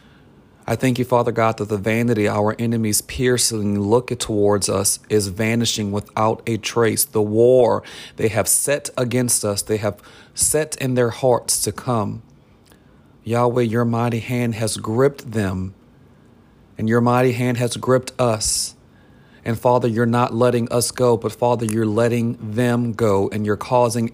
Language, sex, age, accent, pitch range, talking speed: English, male, 40-59, American, 110-125 Hz, 160 wpm